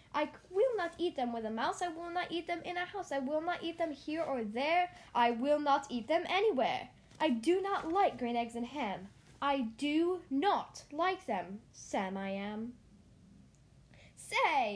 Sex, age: female, 10-29